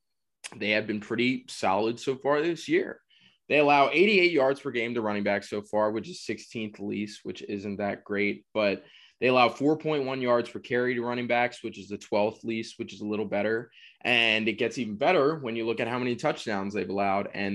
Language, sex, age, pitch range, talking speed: English, male, 20-39, 105-135 Hz, 215 wpm